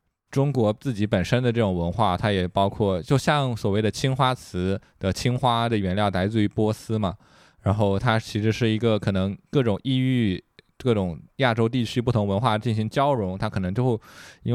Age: 20-39